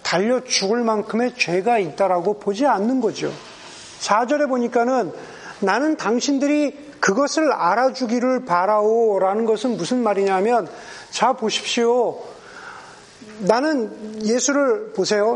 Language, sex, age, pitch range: Korean, male, 40-59, 200-260 Hz